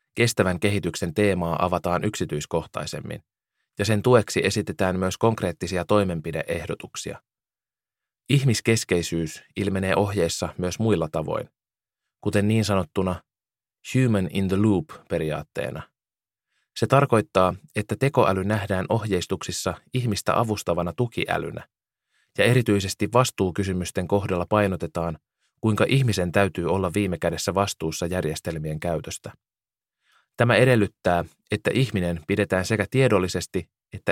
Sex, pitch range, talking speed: male, 90-110 Hz, 100 wpm